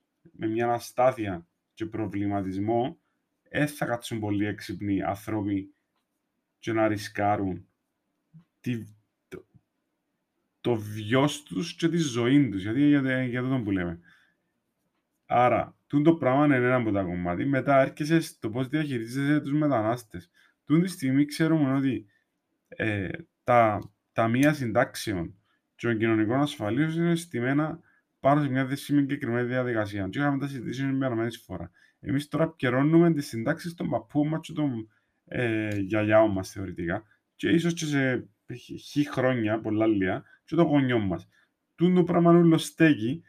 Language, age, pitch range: Greek, 20-39, 110-155 Hz